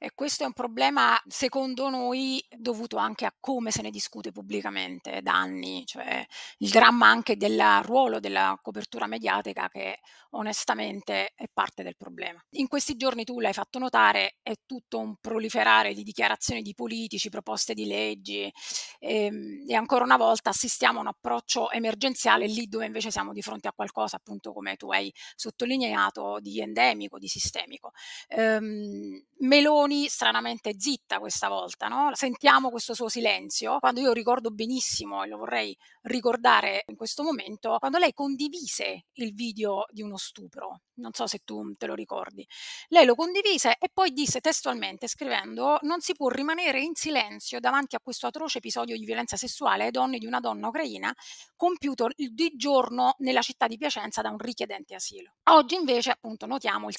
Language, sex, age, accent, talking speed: Italian, female, 30-49, native, 165 wpm